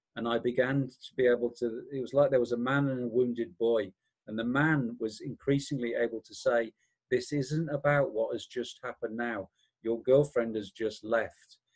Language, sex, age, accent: English, male, 40-59, British